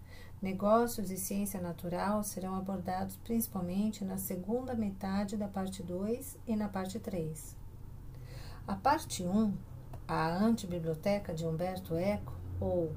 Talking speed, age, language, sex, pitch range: 125 wpm, 50-69, Portuguese, female, 120-200 Hz